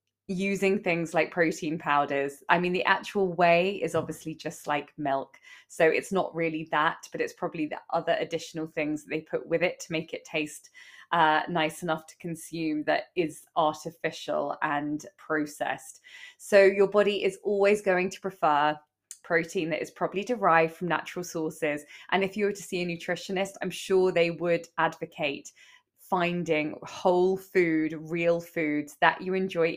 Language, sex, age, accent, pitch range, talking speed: English, female, 20-39, British, 160-190 Hz, 165 wpm